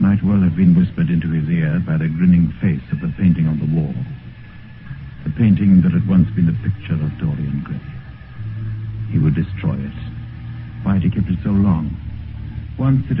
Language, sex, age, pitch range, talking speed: English, male, 60-79, 90-120 Hz, 190 wpm